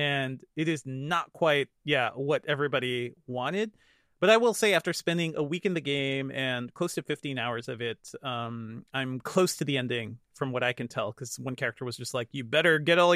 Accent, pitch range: American, 130-170 Hz